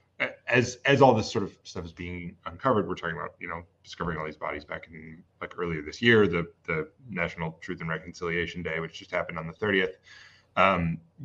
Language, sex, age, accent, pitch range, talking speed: English, male, 30-49, American, 90-115 Hz, 210 wpm